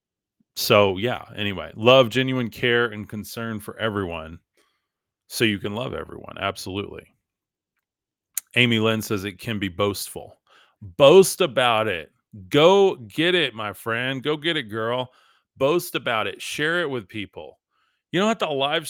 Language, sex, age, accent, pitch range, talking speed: English, male, 30-49, American, 105-135 Hz, 150 wpm